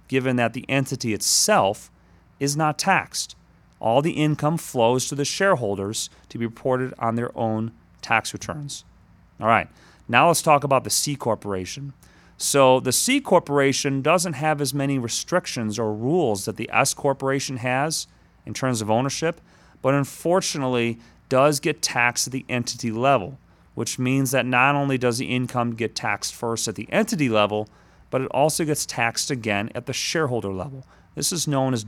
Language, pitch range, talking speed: English, 110-140 Hz, 170 wpm